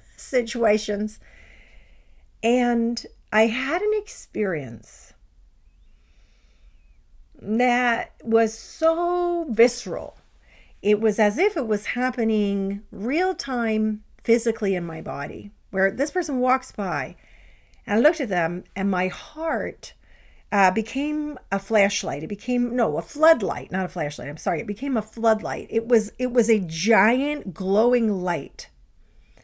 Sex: female